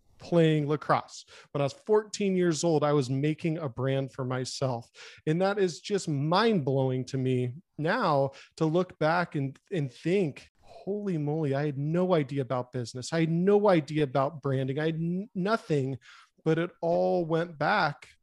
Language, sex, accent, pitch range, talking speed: English, male, American, 135-165 Hz, 175 wpm